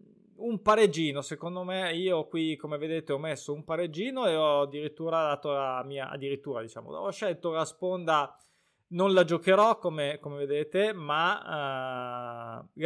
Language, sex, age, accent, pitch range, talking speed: Italian, male, 20-39, native, 145-195 Hz, 150 wpm